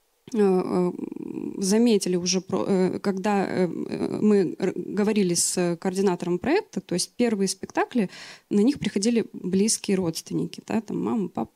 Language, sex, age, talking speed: Russian, female, 20-39, 110 wpm